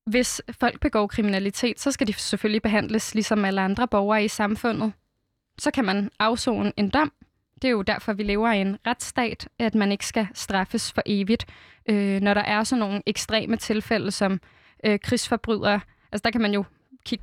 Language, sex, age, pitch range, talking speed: Danish, female, 20-39, 215-245 Hz, 180 wpm